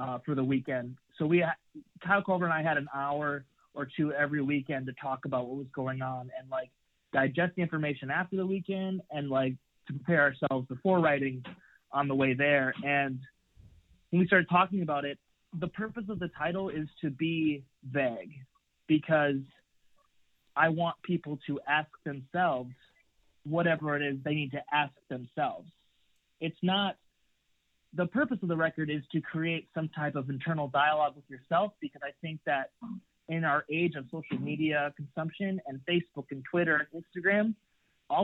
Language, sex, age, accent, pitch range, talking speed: English, male, 30-49, American, 140-175 Hz, 170 wpm